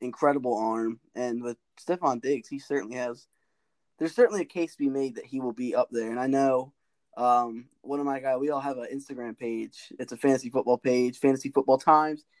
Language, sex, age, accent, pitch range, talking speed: English, male, 10-29, American, 125-155 Hz, 215 wpm